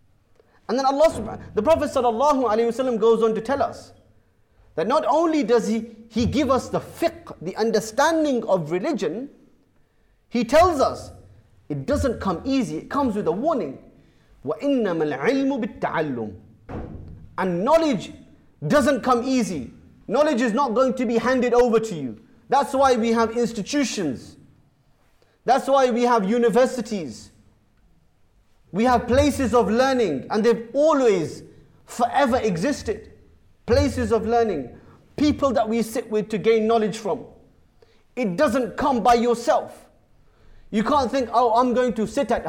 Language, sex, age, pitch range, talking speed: English, male, 30-49, 215-265 Hz, 140 wpm